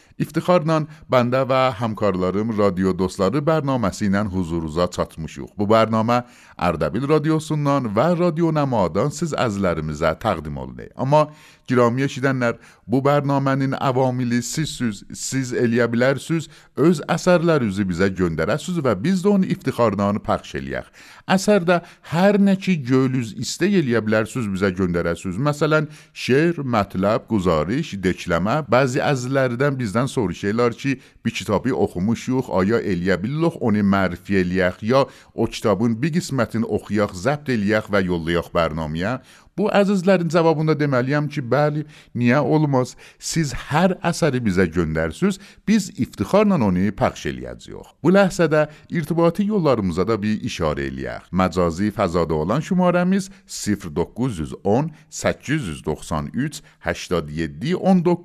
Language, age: Persian, 50-69